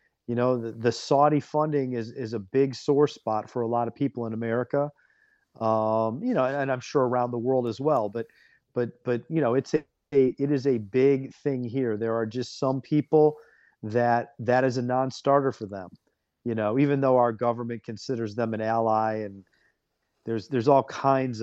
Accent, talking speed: American, 200 wpm